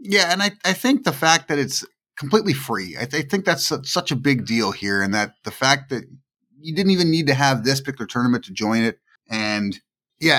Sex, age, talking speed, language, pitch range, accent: male, 30-49, 235 wpm, English, 110-150 Hz, American